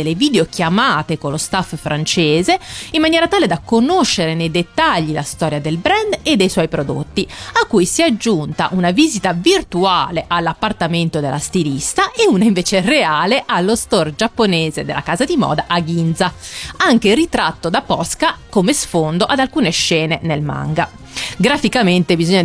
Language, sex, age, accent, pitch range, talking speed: Italian, female, 30-49, native, 165-235 Hz, 155 wpm